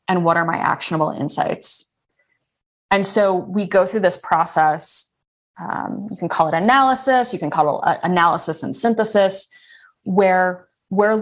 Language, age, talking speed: English, 20-39, 150 wpm